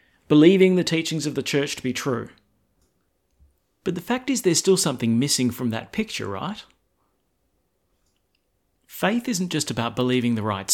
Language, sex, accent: English, male, Australian